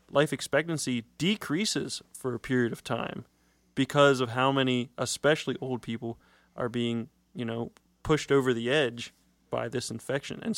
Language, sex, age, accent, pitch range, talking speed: English, male, 30-49, American, 120-155 Hz, 155 wpm